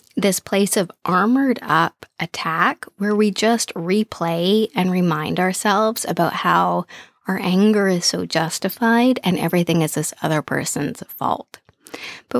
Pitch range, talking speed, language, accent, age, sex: 175-240 Hz, 135 wpm, English, American, 20-39, female